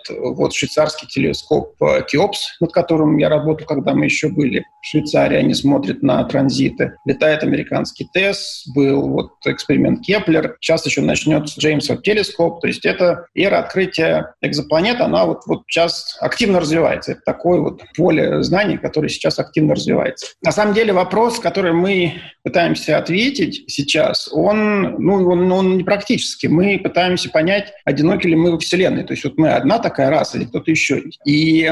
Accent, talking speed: native, 160 wpm